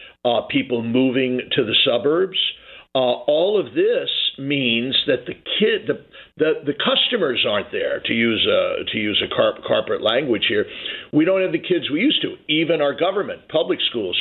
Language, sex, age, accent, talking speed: English, male, 50-69, American, 180 wpm